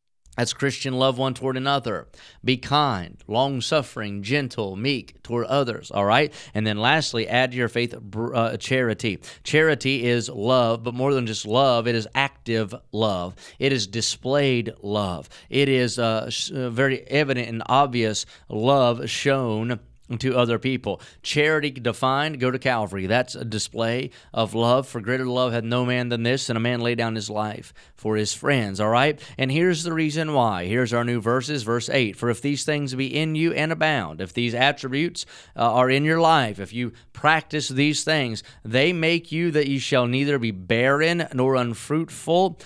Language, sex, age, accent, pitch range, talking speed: English, male, 30-49, American, 115-140 Hz, 175 wpm